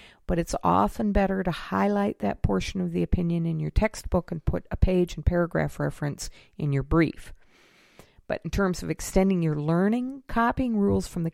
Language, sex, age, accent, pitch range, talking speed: English, female, 50-69, American, 140-200 Hz, 185 wpm